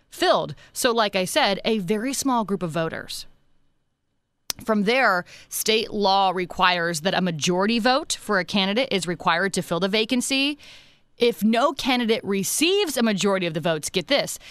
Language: English